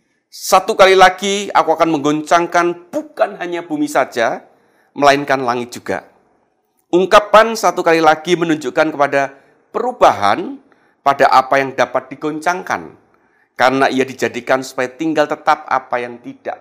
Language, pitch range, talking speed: Indonesian, 145-205 Hz, 125 wpm